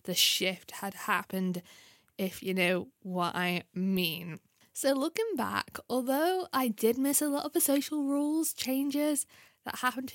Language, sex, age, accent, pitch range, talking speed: English, female, 10-29, British, 190-235 Hz, 160 wpm